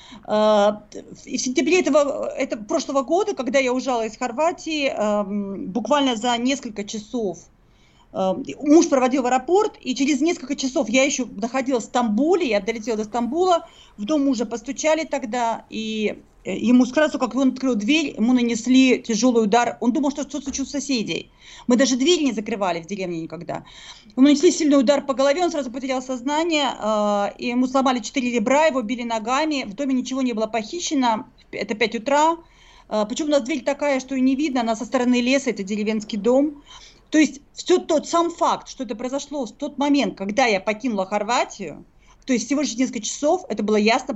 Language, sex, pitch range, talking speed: Russian, female, 225-285 Hz, 175 wpm